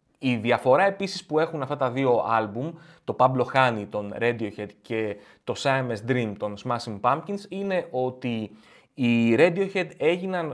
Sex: male